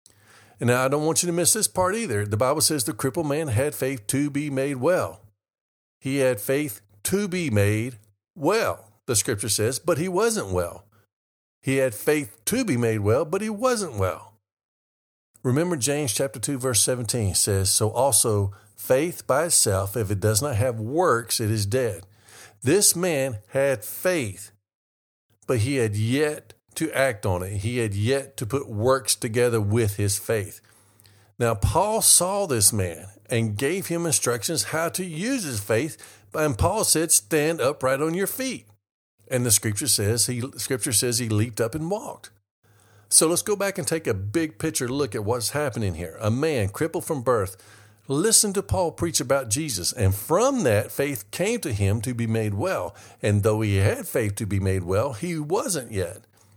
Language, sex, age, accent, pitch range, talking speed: English, male, 50-69, American, 105-150 Hz, 185 wpm